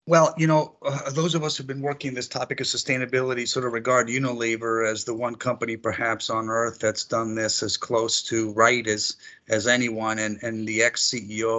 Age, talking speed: 40-59, 200 wpm